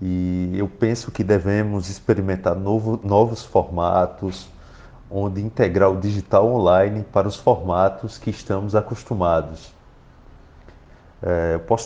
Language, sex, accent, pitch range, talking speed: Portuguese, male, Brazilian, 95-120 Hz, 115 wpm